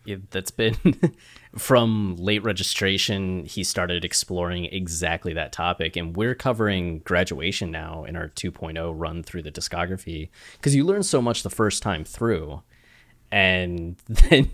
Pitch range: 85-105 Hz